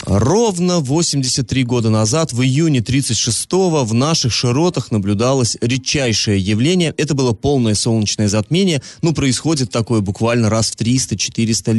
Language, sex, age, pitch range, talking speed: Russian, male, 20-39, 120-150 Hz, 130 wpm